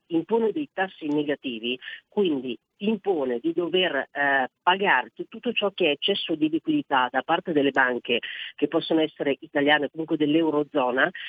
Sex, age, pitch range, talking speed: female, 40-59, 145-180 Hz, 150 wpm